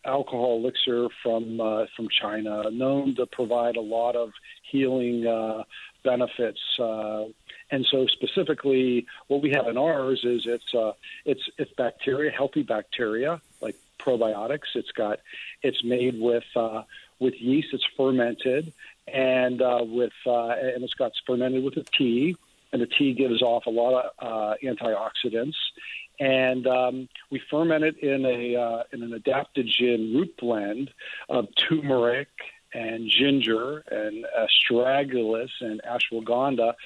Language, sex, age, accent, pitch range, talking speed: English, male, 50-69, American, 115-140 Hz, 140 wpm